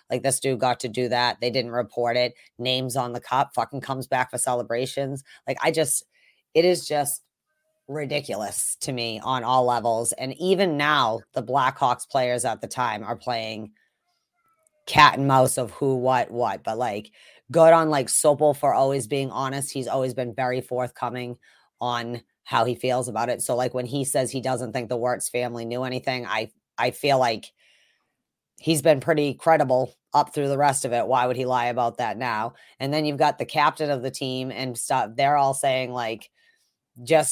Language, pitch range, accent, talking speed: English, 125-145 Hz, American, 195 wpm